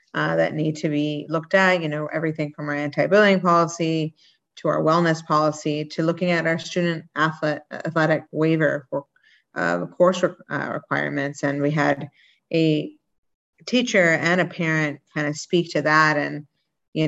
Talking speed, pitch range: 160 wpm, 150-170 Hz